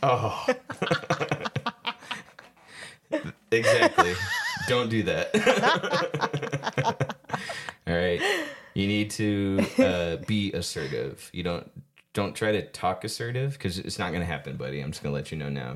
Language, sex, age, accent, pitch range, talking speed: English, male, 30-49, American, 75-100 Hz, 125 wpm